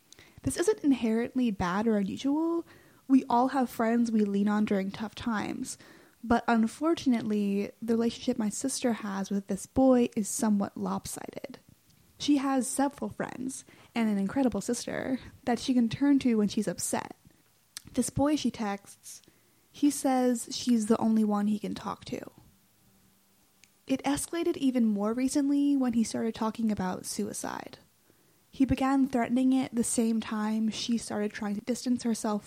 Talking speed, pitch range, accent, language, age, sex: 155 wpm, 210-265 Hz, American, English, 10-29, female